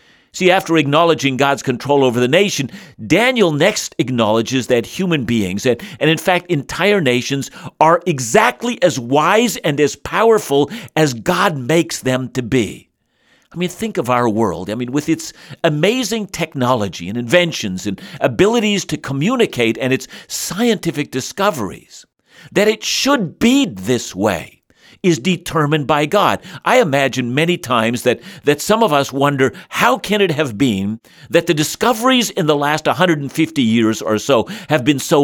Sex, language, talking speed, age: male, English, 155 wpm, 50-69